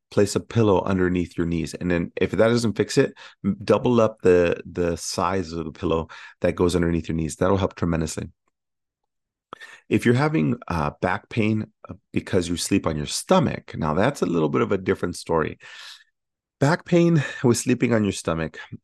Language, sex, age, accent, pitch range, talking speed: English, male, 30-49, American, 85-110 Hz, 180 wpm